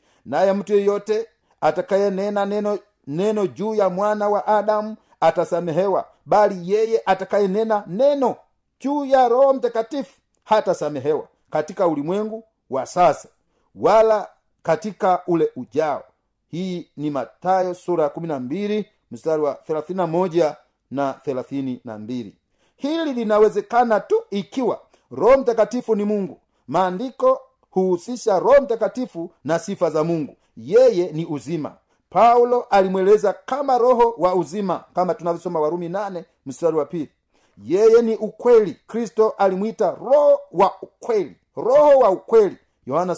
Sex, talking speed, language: male, 120 wpm, Swahili